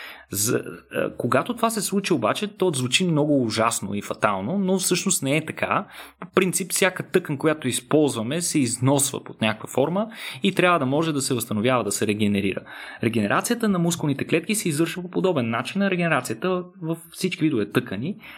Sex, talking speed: male, 170 wpm